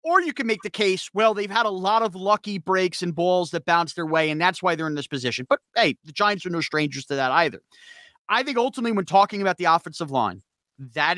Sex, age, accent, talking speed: male, 30-49, American, 250 wpm